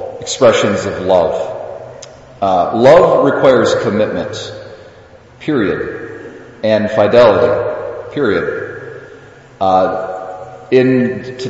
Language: English